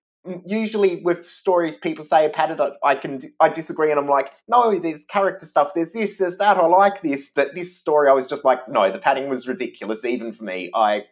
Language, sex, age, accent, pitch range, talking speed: English, male, 30-49, Australian, 125-180 Hz, 220 wpm